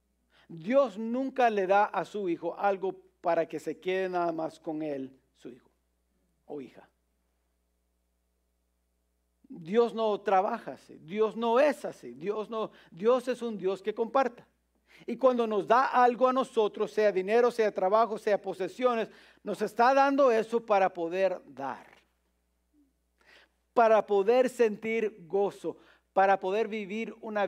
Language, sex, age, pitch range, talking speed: English, male, 50-69, 140-220 Hz, 140 wpm